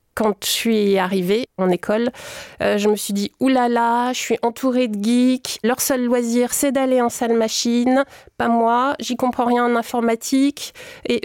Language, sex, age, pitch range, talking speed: French, female, 30-49, 205-245 Hz, 185 wpm